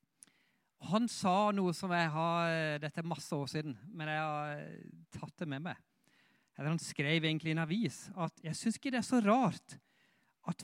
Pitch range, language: 140-185 Hz, English